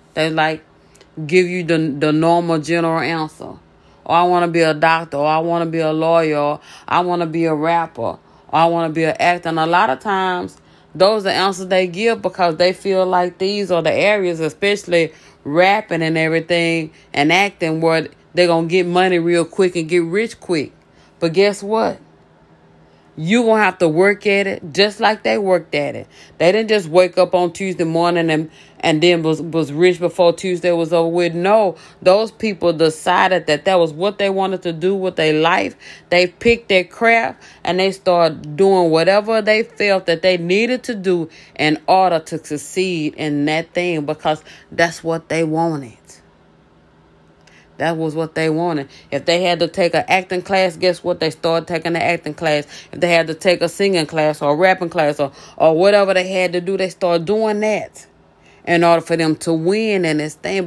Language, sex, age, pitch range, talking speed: English, female, 30-49, 160-190 Hz, 205 wpm